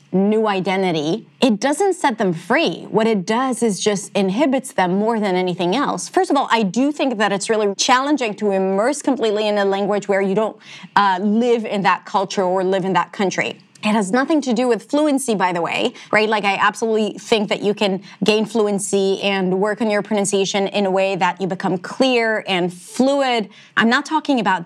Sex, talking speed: female, 205 wpm